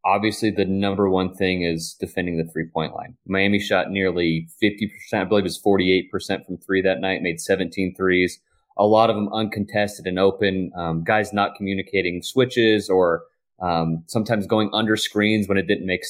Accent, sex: American, male